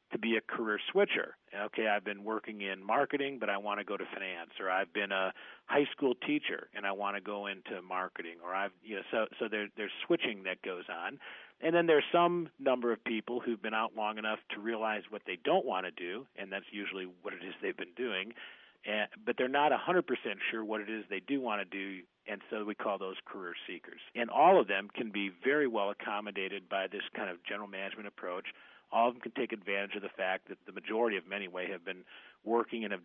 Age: 40-59